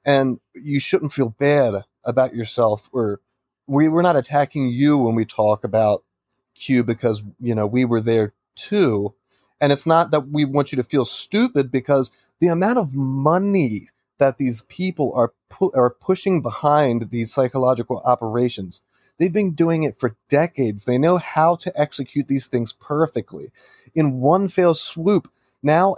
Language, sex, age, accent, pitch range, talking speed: English, male, 20-39, American, 120-150 Hz, 160 wpm